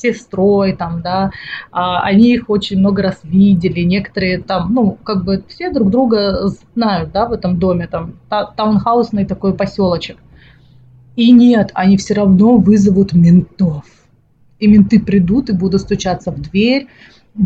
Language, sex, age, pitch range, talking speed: English, female, 30-49, 185-220 Hz, 150 wpm